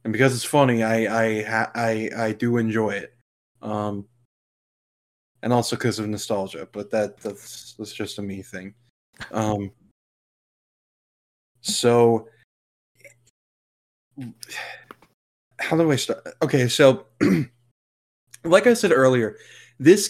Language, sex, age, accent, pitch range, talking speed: English, male, 20-39, American, 110-130 Hz, 115 wpm